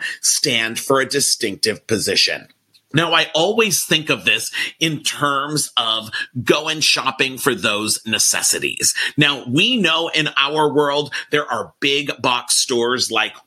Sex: male